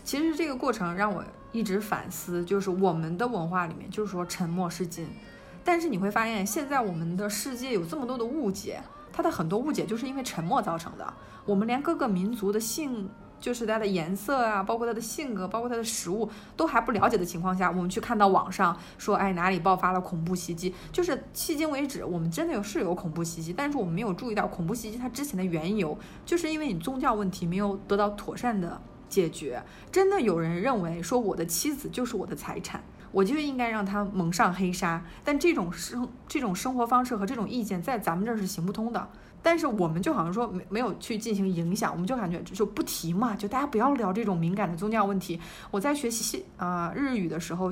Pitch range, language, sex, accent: 185-245 Hz, Chinese, female, native